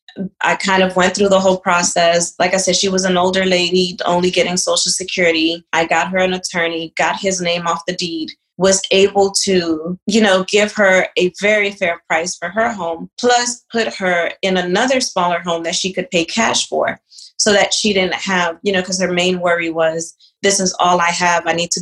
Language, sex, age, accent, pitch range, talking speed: English, female, 20-39, American, 170-195 Hz, 215 wpm